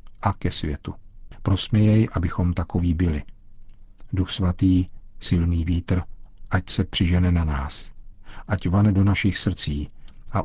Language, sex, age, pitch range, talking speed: Czech, male, 50-69, 85-105 Hz, 125 wpm